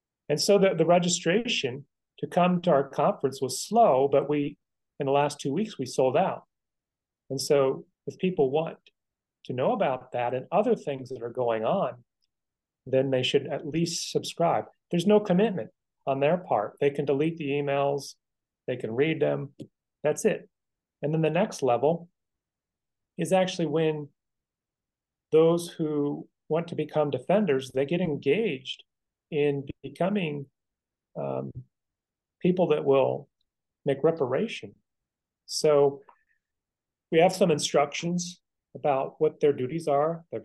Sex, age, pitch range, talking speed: male, 30-49, 130-165 Hz, 145 wpm